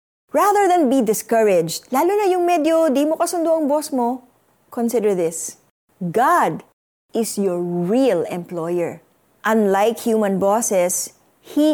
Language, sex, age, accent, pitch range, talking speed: Filipino, female, 20-39, native, 205-315 Hz, 130 wpm